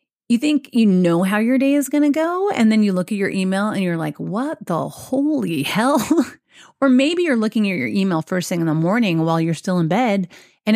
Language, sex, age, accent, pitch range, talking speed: English, female, 30-49, American, 170-245 Hz, 240 wpm